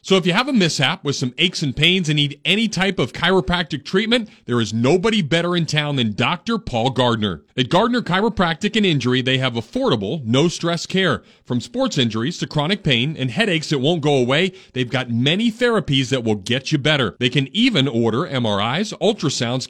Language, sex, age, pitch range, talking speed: English, male, 40-59, 130-190 Hz, 200 wpm